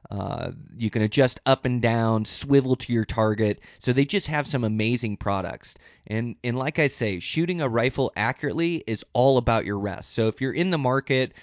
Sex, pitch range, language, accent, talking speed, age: male, 105-125 Hz, English, American, 200 wpm, 30-49